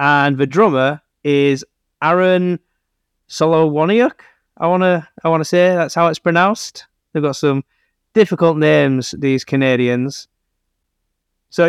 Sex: male